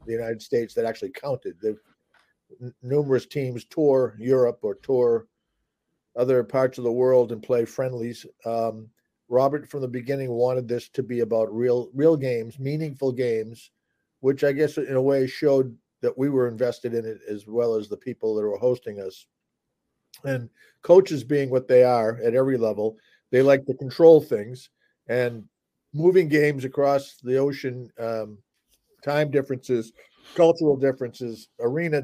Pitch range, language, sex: 115-140 Hz, English, male